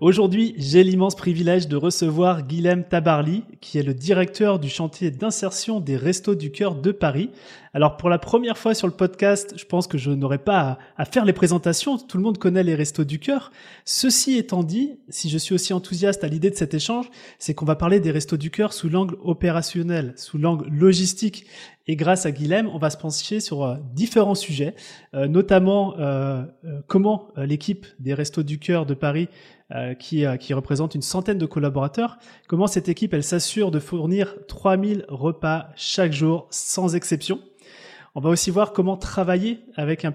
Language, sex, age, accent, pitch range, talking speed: French, male, 30-49, French, 150-195 Hz, 185 wpm